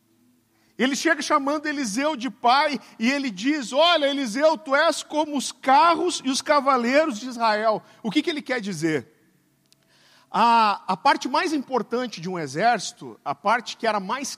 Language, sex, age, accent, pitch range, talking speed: Portuguese, male, 50-69, Brazilian, 225-300 Hz, 165 wpm